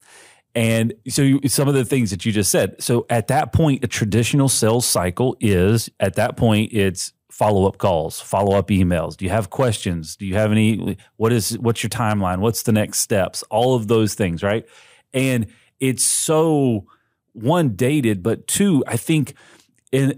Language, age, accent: English, 30-49, American